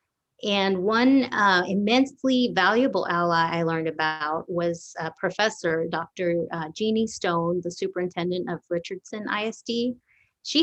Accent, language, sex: American, English, female